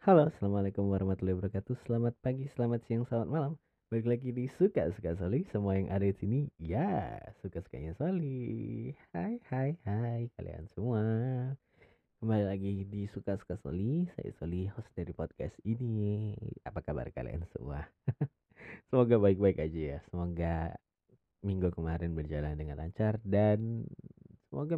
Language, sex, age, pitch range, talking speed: Indonesian, male, 20-39, 90-120 Hz, 140 wpm